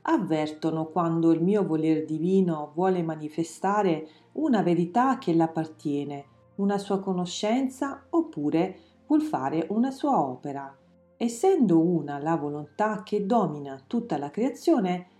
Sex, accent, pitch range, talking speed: female, native, 155-235 Hz, 120 wpm